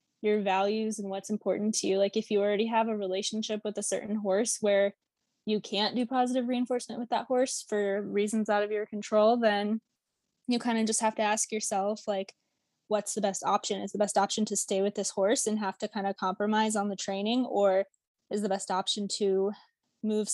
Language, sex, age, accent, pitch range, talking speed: English, female, 10-29, American, 195-215 Hz, 210 wpm